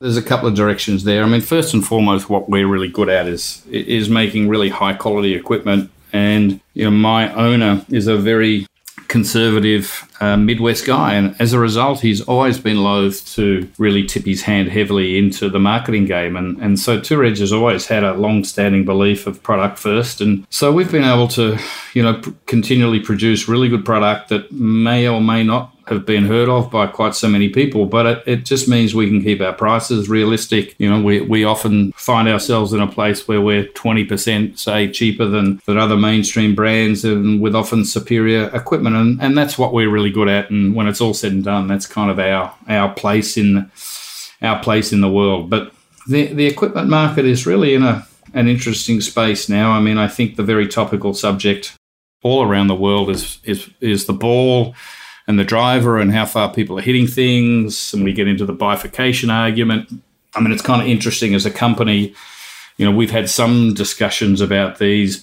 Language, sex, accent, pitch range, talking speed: English, male, Australian, 100-115 Hz, 200 wpm